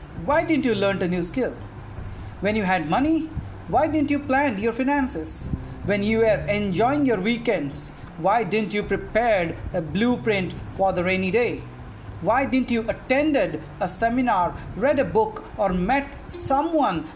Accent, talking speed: Indian, 155 wpm